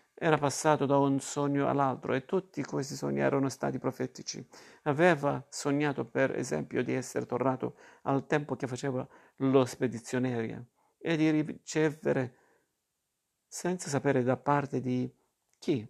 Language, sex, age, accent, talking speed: Italian, male, 50-69, native, 130 wpm